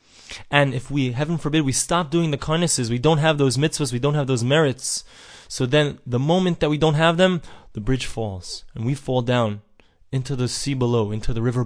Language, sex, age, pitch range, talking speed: English, male, 20-39, 115-155 Hz, 220 wpm